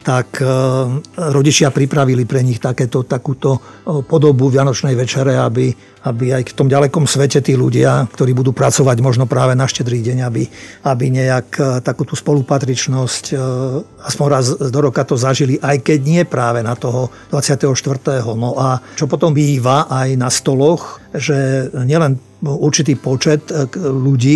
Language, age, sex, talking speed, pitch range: Slovak, 50-69, male, 145 wpm, 130-145 Hz